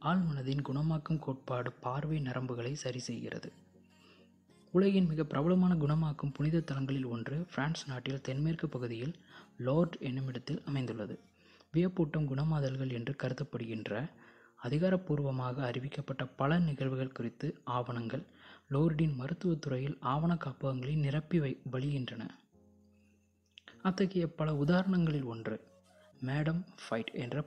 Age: 20-39